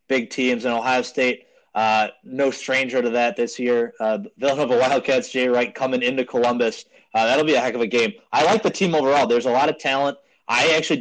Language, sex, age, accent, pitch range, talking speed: English, male, 20-39, American, 115-135 Hz, 230 wpm